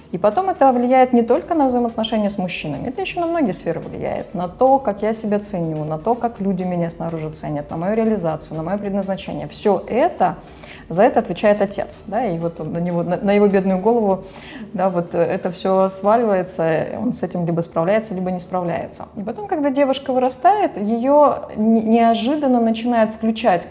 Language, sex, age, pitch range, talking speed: Russian, female, 20-39, 185-240 Hz, 180 wpm